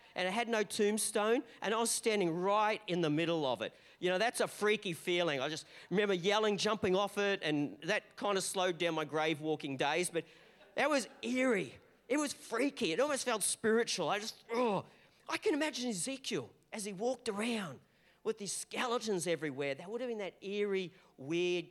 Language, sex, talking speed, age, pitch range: English, male, 195 wpm, 40-59, 155-210 Hz